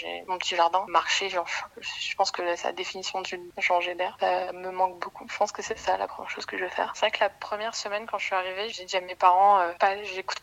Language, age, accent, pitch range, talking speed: French, 20-39, French, 180-195 Hz, 275 wpm